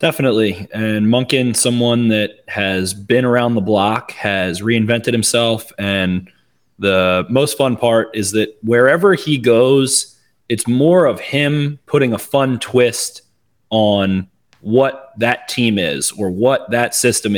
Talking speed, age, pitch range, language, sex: 140 wpm, 20-39, 100-120 Hz, English, male